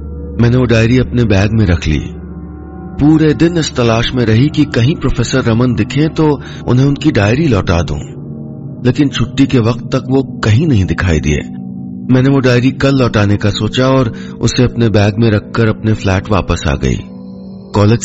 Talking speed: 180 wpm